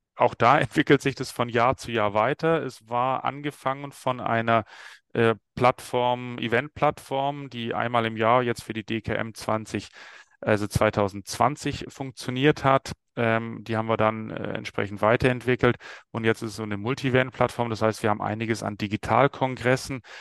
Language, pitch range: German, 110-125 Hz